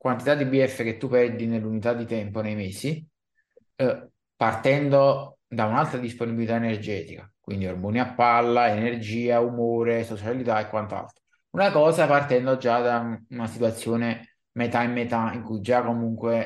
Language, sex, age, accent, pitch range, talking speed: Italian, male, 20-39, native, 110-125 Hz, 145 wpm